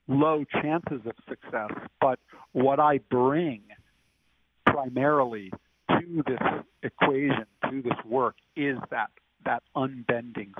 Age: 50-69